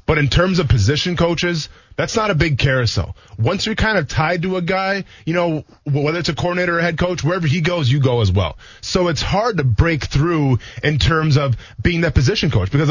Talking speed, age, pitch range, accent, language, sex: 230 wpm, 20-39, 130-175 Hz, American, English, male